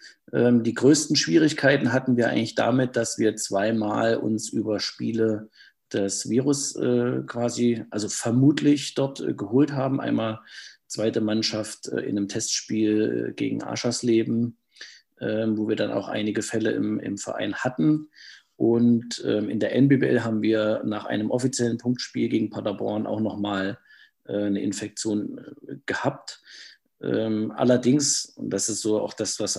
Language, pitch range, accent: German, 110-125 Hz, German